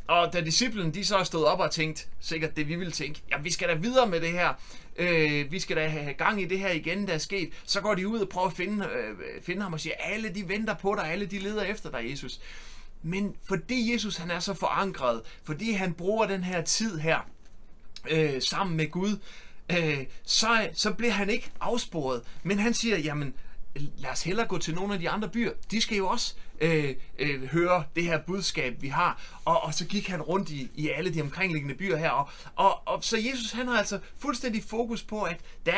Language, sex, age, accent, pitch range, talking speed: Danish, male, 30-49, native, 160-210 Hz, 225 wpm